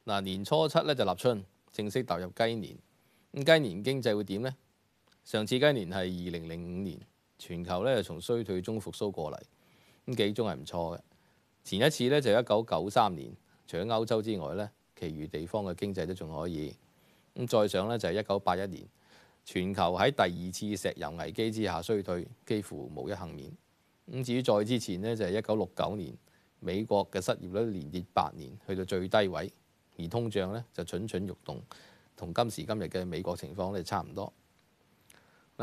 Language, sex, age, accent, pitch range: Chinese, male, 20-39, native, 90-110 Hz